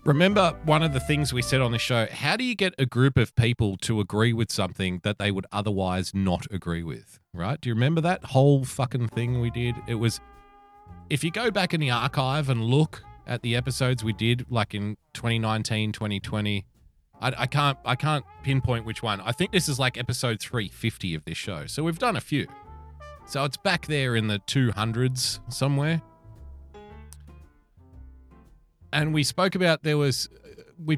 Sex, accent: male, Australian